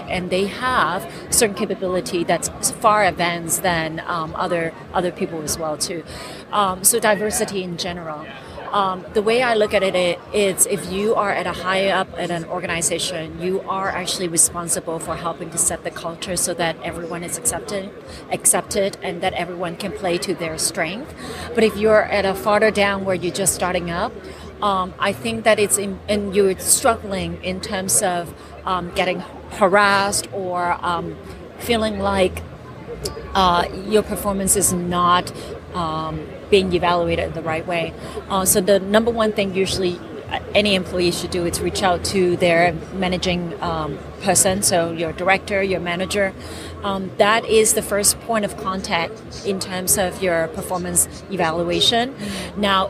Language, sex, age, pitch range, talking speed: English, female, 40-59, 175-200 Hz, 165 wpm